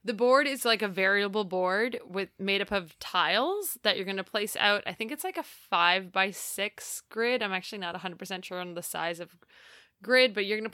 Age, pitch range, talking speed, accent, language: 20-39, 185-230 Hz, 230 wpm, American, English